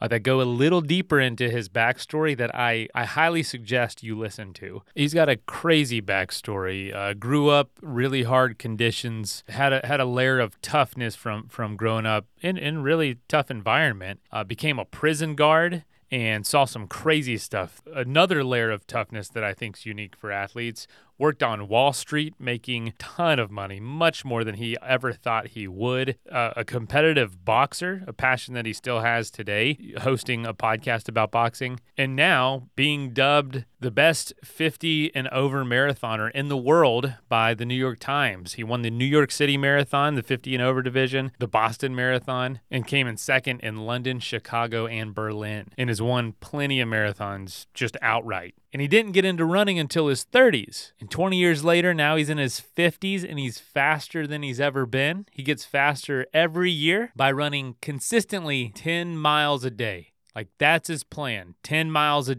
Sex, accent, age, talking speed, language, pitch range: male, American, 30-49, 185 wpm, English, 115-150 Hz